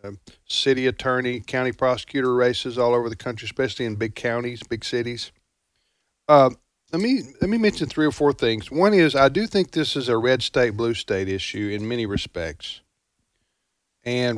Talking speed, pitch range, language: 175 wpm, 110-135 Hz, English